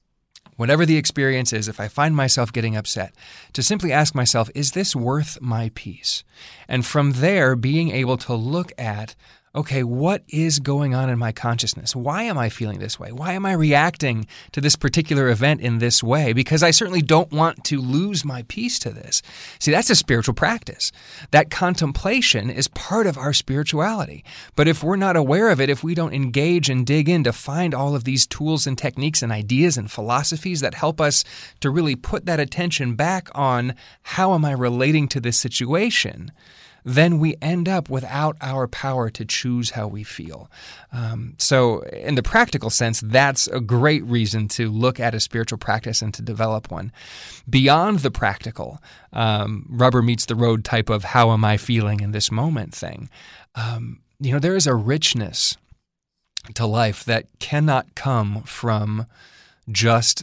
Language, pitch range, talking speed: English, 115-150 Hz, 180 wpm